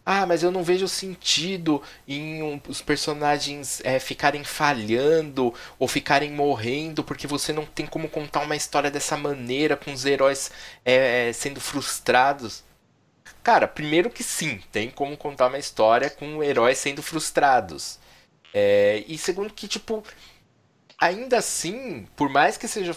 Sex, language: male, Portuguese